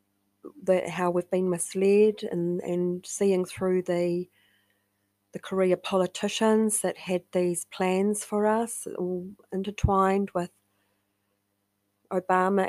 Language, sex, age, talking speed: English, female, 30-49, 110 wpm